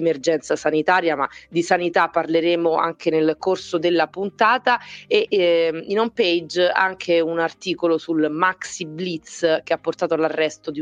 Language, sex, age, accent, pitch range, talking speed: Italian, female, 30-49, native, 150-175 Hz, 145 wpm